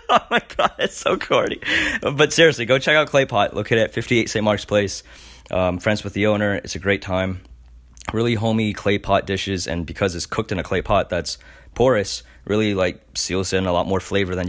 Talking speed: 215 wpm